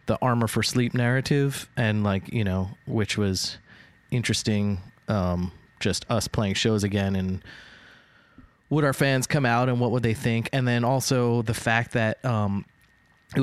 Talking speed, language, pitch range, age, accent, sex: 165 wpm, English, 110-130 Hz, 20-39, American, male